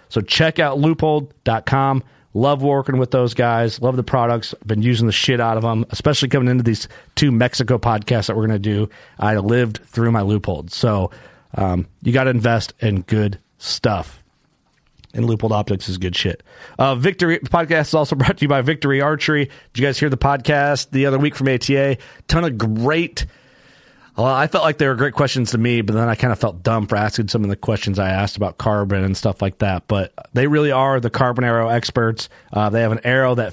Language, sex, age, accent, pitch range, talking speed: English, male, 40-59, American, 115-145 Hz, 215 wpm